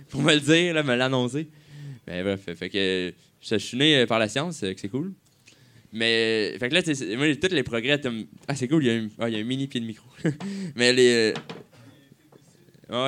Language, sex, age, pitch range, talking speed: French, male, 20-39, 120-150 Hz, 205 wpm